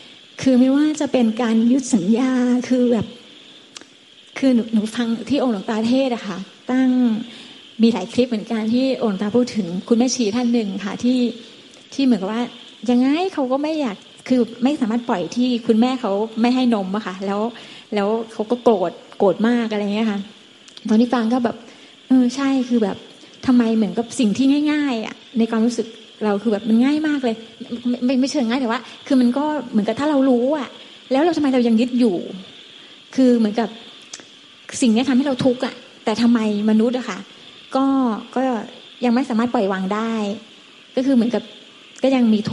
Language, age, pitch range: Thai, 20-39, 220-255 Hz